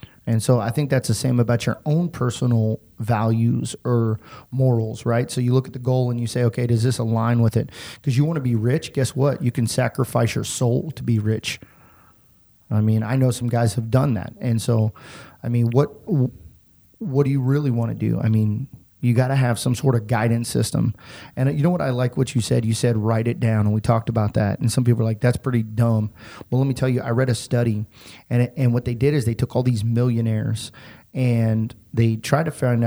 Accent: American